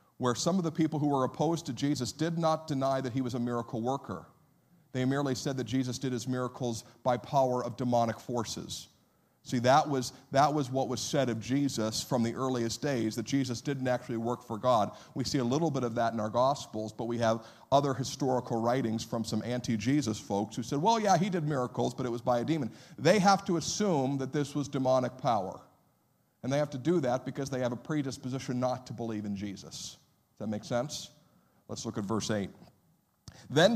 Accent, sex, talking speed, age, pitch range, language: American, male, 215 wpm, 50-69, 120-160 Hz, English